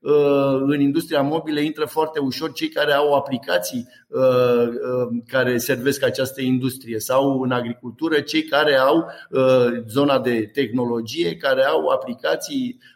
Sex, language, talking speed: male, Romanian, 120 wpm